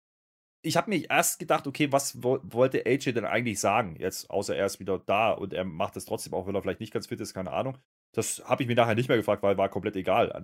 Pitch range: 100-130 Hz